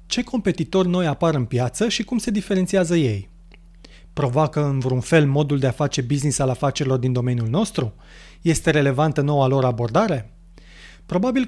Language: Romanian